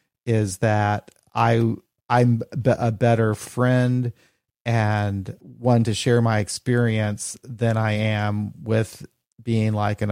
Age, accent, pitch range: 40-59, American, 105-120 Hz